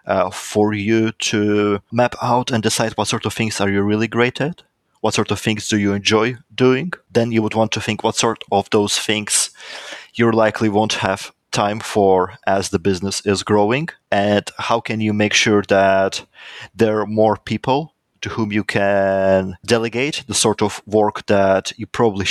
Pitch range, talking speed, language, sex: 100-115 Hz, 190 wpm, English, male